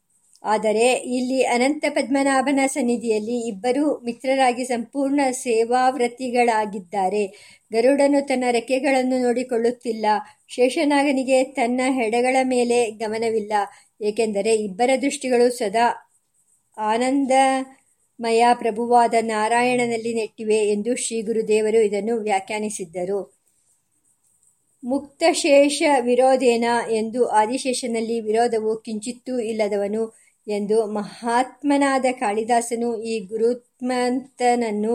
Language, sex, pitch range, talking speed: Kannada, male, 220-255 Hz, 75 wpm